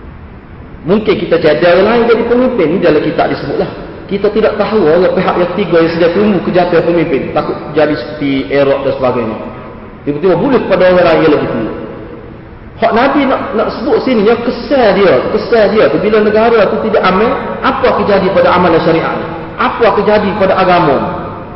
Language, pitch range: Malay, 160-235 Hz